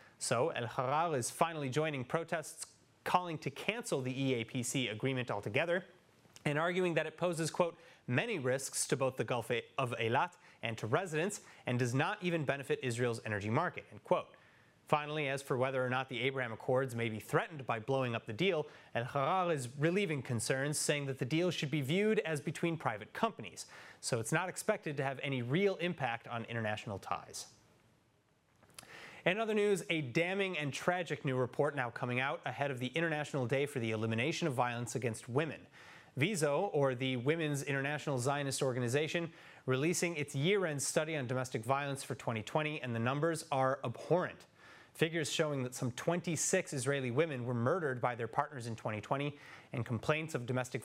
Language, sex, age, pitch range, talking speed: English, male, 30-49, 125-160 Hz, 175 wpm